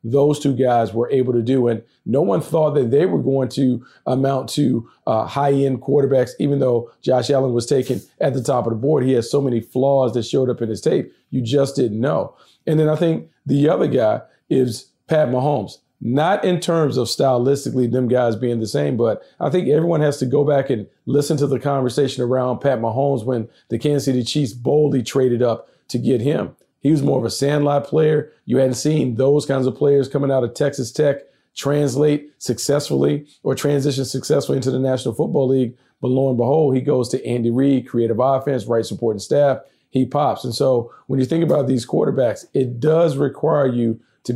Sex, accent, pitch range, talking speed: male, American, 125-145 Hz, 210 wpm